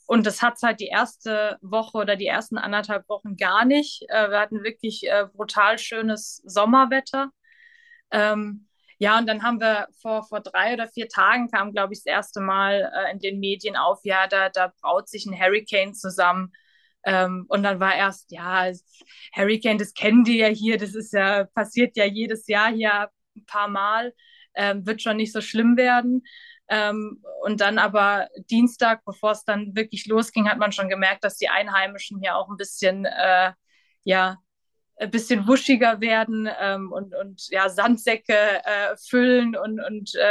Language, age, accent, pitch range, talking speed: German, 20-39, German, 195-230 Hz, 170 wpm